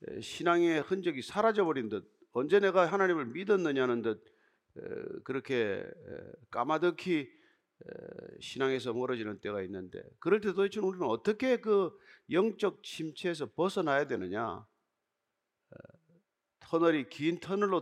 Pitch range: 155-230 Hz